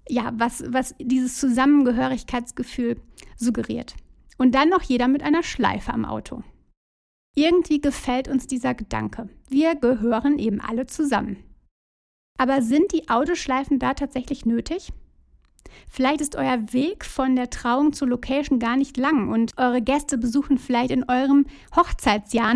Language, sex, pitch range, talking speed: German, female, 240-280 Hz, 140 wpm